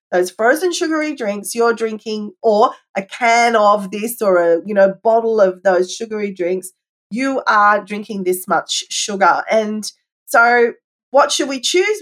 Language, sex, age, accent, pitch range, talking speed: English, female, 40-59, Australian, 210-270 Hz, 160 wpm